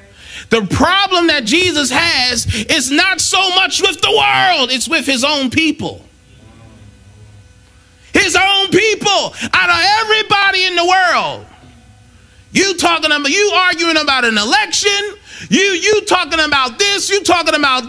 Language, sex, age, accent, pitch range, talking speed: English, male, 30-49, American, 240-370 Hz, 140 wpm